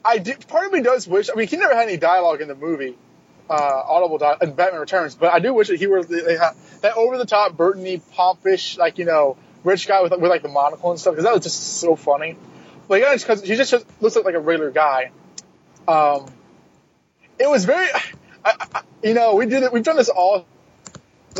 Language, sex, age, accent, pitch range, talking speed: English, male, 20-39, American, 170-225 Hz, 230 wpm